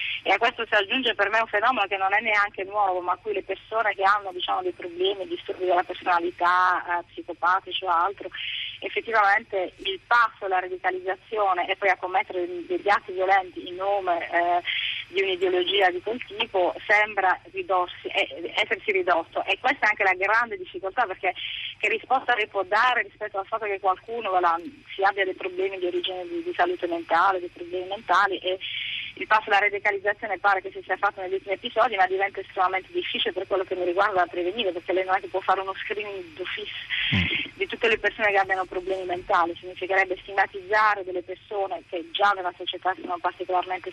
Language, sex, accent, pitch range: Italian, female, native, 185-210 Hz